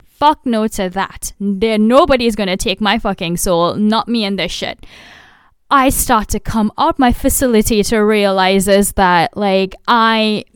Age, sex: 10-29, female